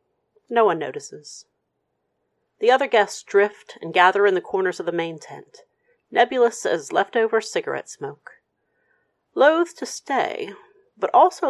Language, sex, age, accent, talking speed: English, female, 40-59, American, 135 wpm